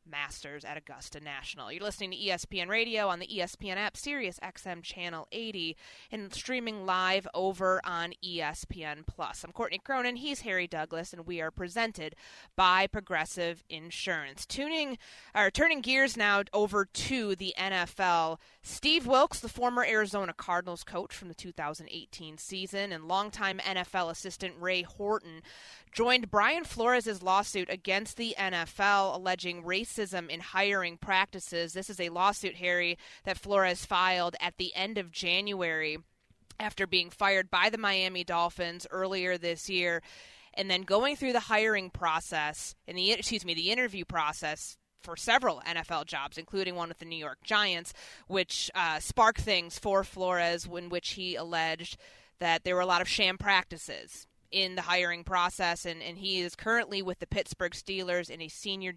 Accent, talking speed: American, 160 wpm